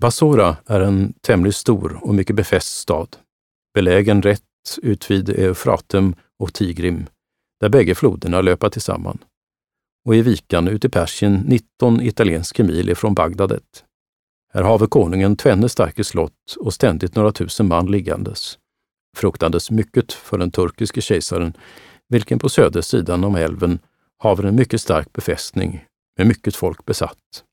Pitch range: 85-110 Hz